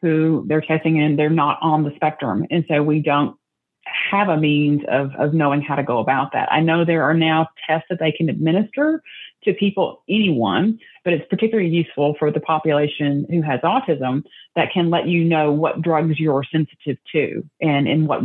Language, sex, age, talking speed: English, female, 30-49, 195 wpm